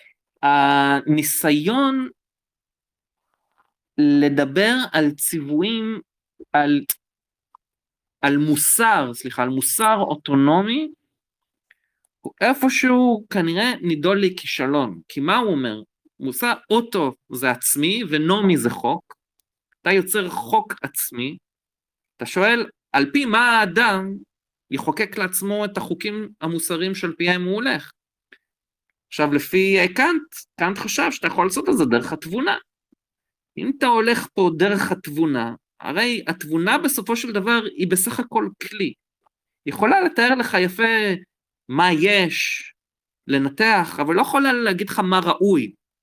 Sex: male